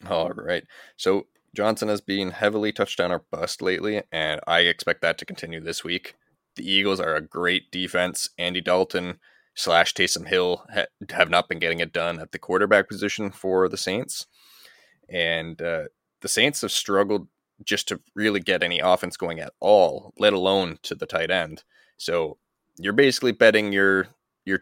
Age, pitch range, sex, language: 20-39, 85-100 Hz, male, English